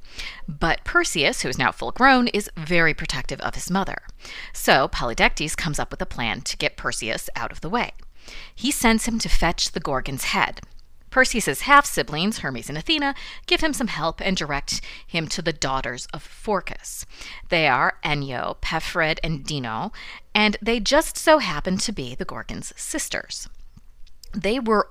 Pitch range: 150-230 Hz